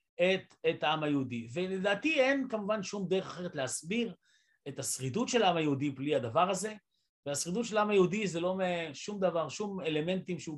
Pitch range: 160-210 Hz